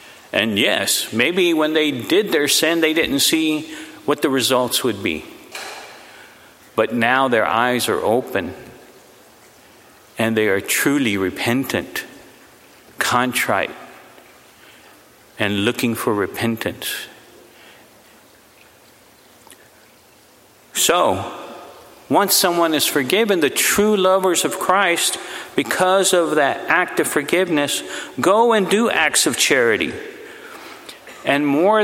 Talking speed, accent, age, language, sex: 105 wpm, American, 50-69, English, male